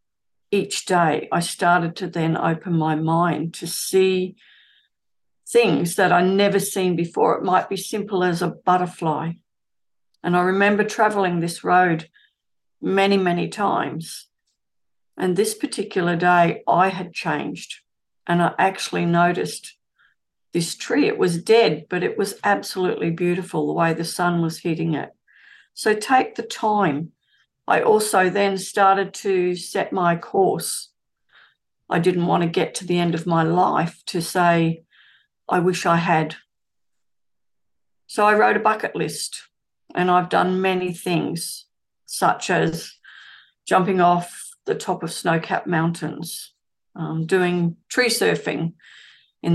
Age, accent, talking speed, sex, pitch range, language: 50-69, Australian, 140 wpm, female, 170-195 Hz, English